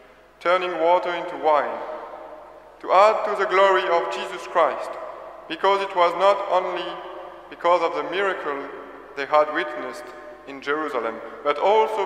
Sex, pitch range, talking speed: male, 145-180 Hz, 140 wpm